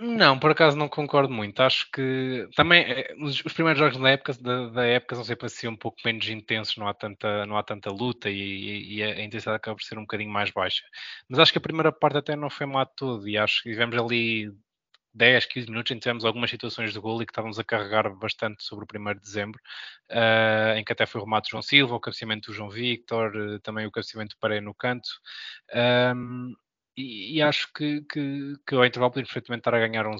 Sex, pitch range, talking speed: male, 110-130 Hz, 230 wpm